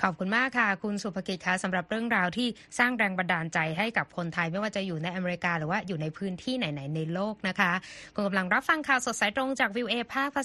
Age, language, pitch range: 20-39, Thai, 190-245 Hz